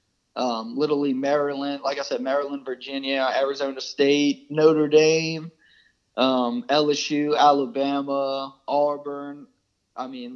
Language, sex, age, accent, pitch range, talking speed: English, male, 20-39, American, 125-145 Hz, 105 wpm